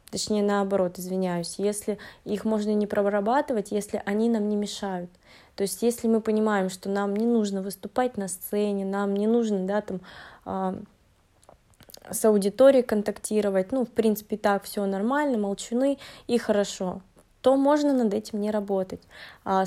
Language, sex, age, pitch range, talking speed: Russian, female, 20-39, 195-225 Hz, 155 wpm